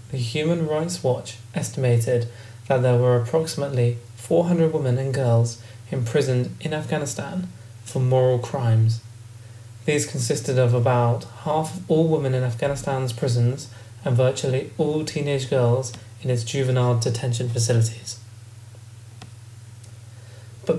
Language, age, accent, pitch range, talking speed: English, 20-39, British, 115-140 Hz, 120 wpm